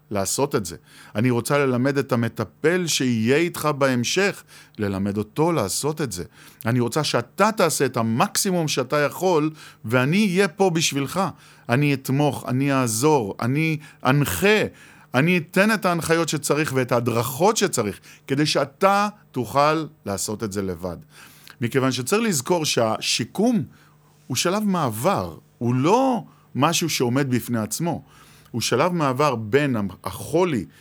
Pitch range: 115-160 Hz